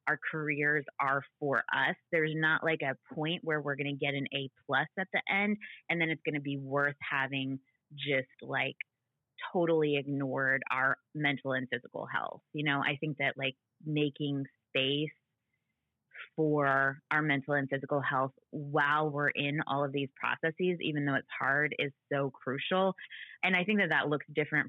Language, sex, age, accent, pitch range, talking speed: English, female, 20-39, American, 135-155 Hz, 175 wpm